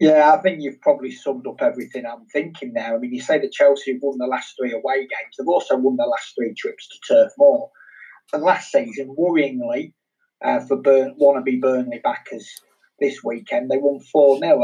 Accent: British